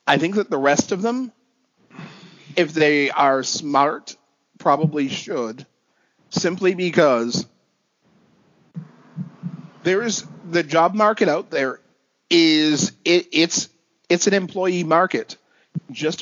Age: 40-59